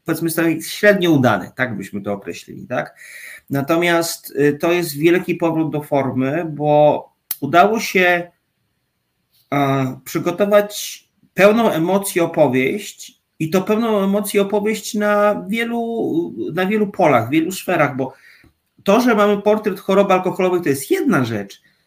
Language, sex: Polish, male